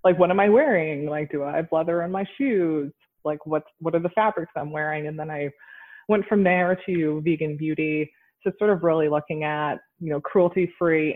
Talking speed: 210 wpm